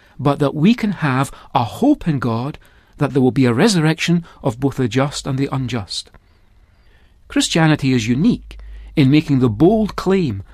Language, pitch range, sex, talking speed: English, 110-165 Hz, male, 170 wpm